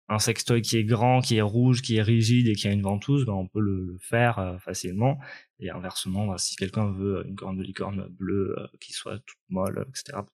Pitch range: 105-125 Hz